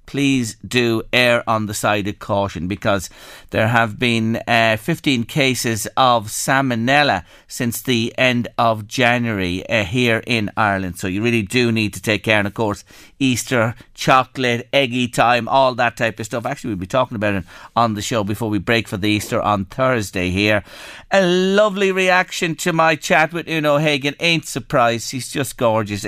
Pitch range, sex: 110-135 Hz, male